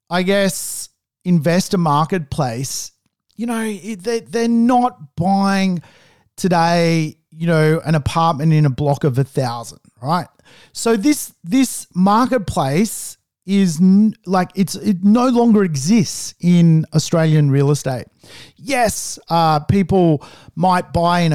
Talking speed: 120 wpm